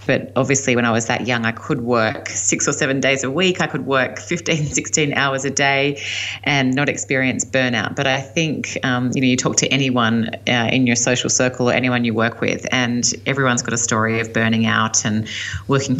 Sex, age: female, 30-49